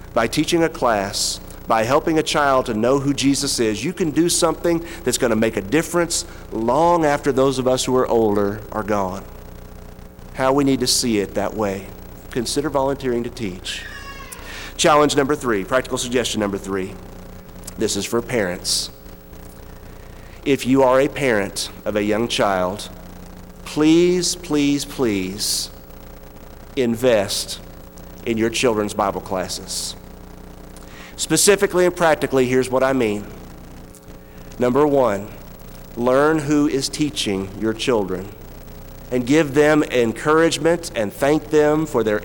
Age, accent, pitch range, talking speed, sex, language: 50-69, American, 95-150 Hz, 140 wpm, male, English